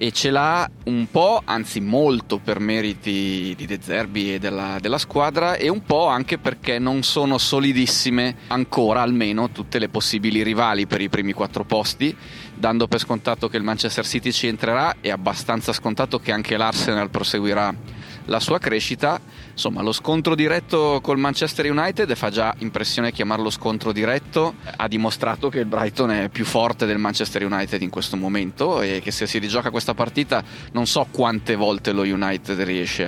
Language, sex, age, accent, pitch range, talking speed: Italian, male, 30-49, native, 105-125 Hz, 170 wpm